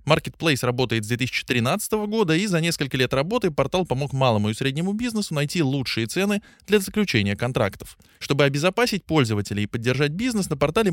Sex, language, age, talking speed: male, Russian, 20-39, 165 wpm